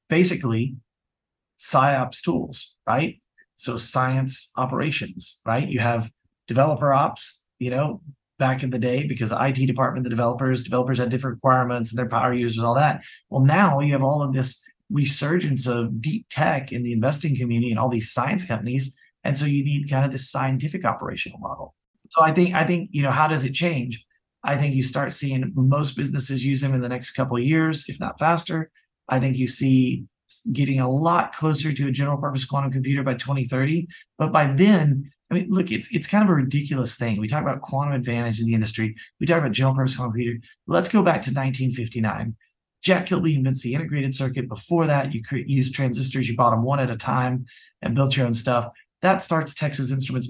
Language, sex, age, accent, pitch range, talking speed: English, male, 30-49, American, 125-145 Hz, 205 wpm